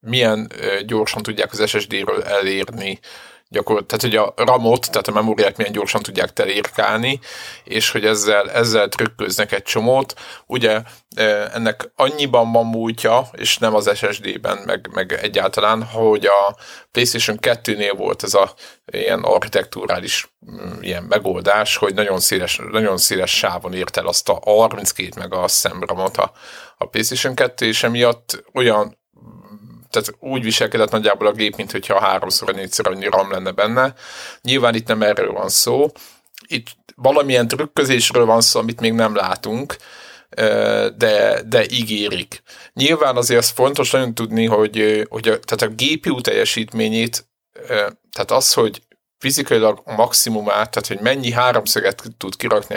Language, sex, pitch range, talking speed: Hungarian, male, 110-130 Hz, 140 wpm